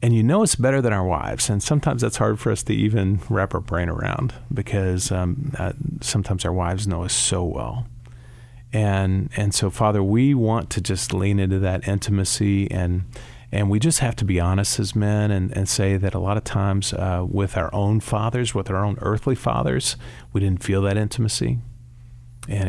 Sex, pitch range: male, 95-120 Hz